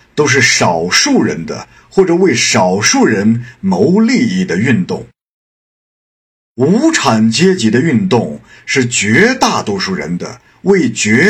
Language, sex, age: Chinese, male, 50-69